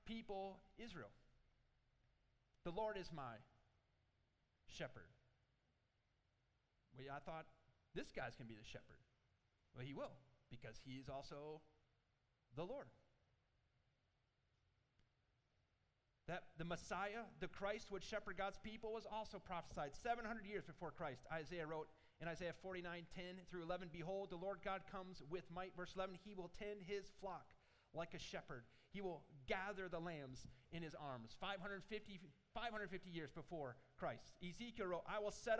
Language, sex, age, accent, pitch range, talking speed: English, male, 30-49, American, 135-210 Hz, 140 wpm